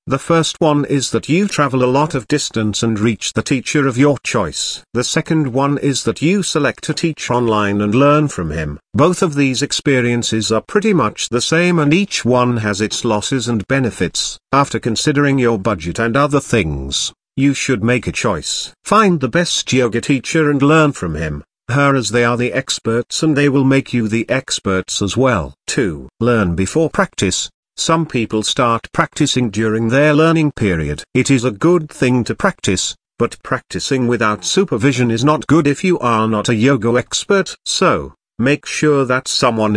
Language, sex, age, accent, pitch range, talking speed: English, male, 50-69, British, 110-150 Hz, 185 wpm